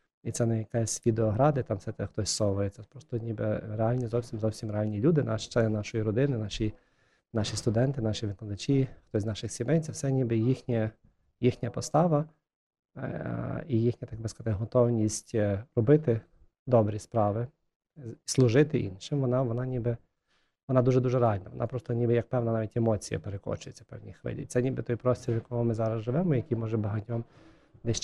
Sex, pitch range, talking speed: male, 110-125 Hz, 165 wpm